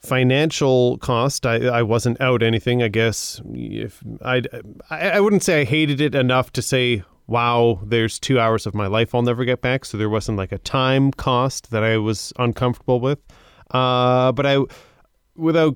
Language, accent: English, American